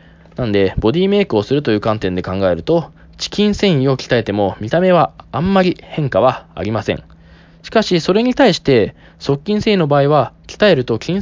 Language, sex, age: Japanese, male, 20-39